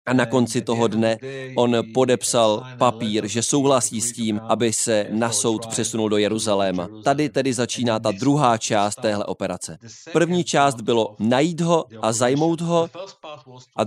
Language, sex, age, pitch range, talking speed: Czech, male, 30-49, 115-140 Hz, 155 wpm